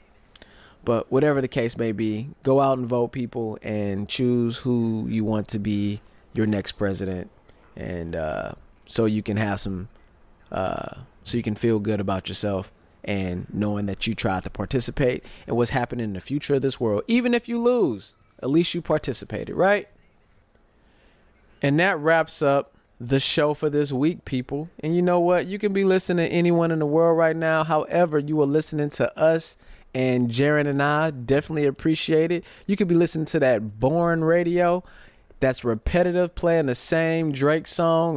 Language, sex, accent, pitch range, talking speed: English, male, American, 115-160 Hz, 180 wpm